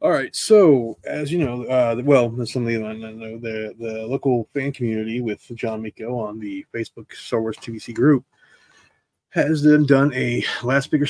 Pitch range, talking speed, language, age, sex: 115-150 Hz, 155 wpm, English, 30-49, male